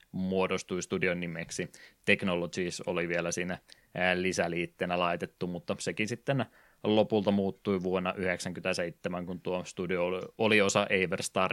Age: 20-39